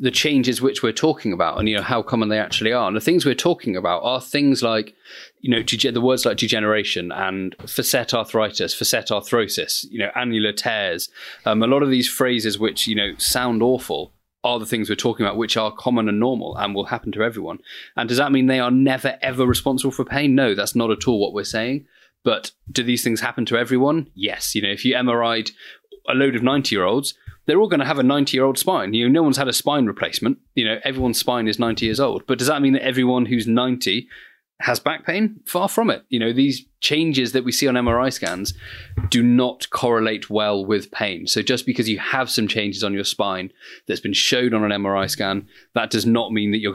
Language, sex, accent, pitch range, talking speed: English, male, British, 110-130 Hz, 230 wpm